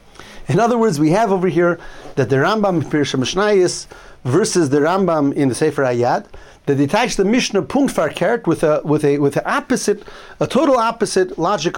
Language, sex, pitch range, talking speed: English, male, 145-200 Hz, 180 wpm